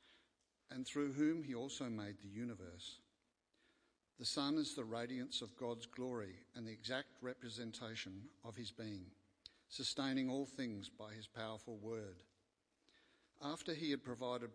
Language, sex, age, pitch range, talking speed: English, male, 60-79, 110-130 Hz, 140 wpm